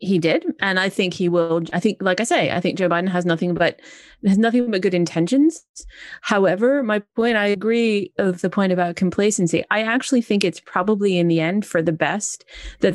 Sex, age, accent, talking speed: female, 30-49, American, 215 wpm